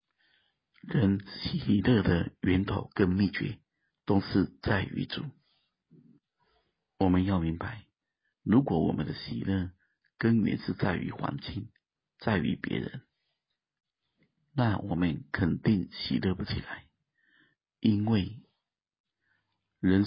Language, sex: Chinese, male